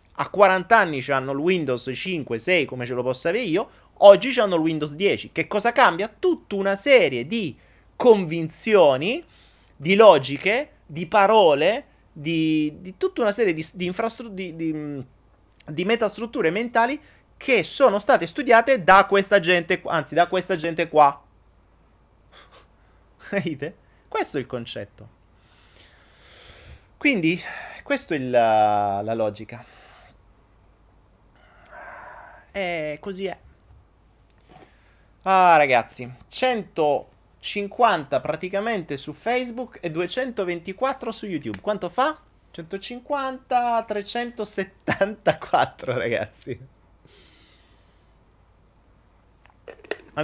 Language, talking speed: Italian, 105 wpm